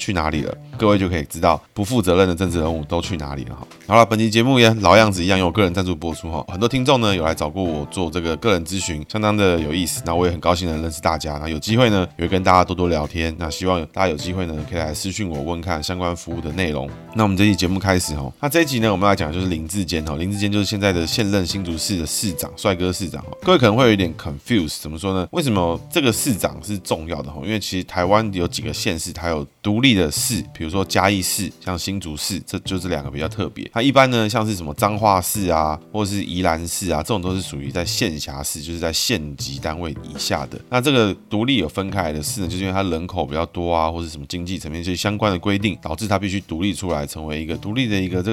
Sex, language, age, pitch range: male, Chinese, 20-39, 80-100 Hz